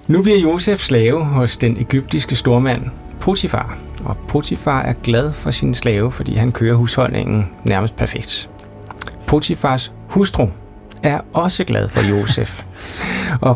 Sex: male